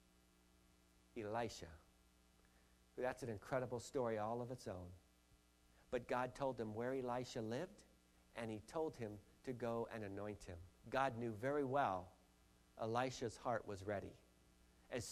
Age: 50-69